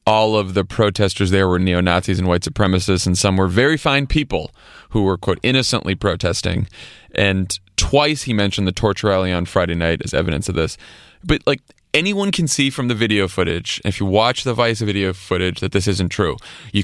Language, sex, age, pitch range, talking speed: English, male, 30-49, 100-140 Hz, 200 wpm